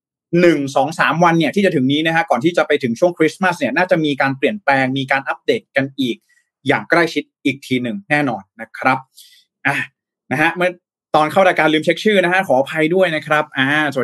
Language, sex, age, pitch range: Thai, male, 20-39, 130-165 Hz